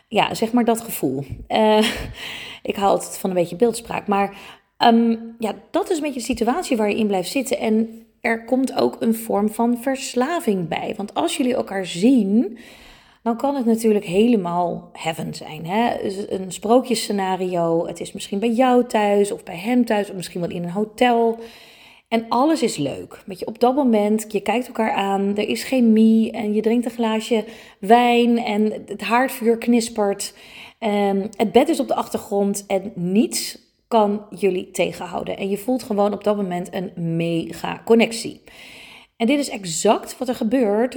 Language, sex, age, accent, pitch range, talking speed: Dutch, female, 30-49, Dutch, 200-235 Hz, 180 wpm